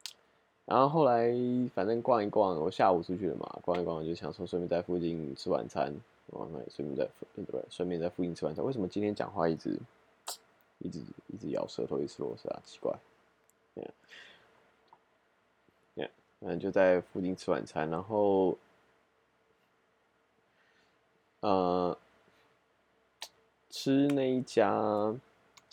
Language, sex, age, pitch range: Chinese, male, 20-39, 85-105 Hz